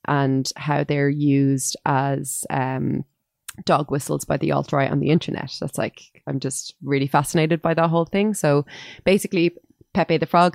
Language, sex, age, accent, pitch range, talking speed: English, female, 20-39, Irish, 135-160 Hz, 165 wpm